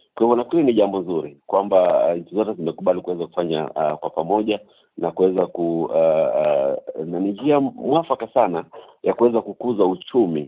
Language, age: Swahili, 50-69